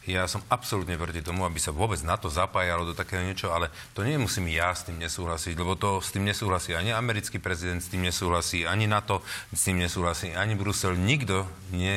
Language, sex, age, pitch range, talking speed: Slovak, male, 40-59, 90-115 Hz, 205 wpm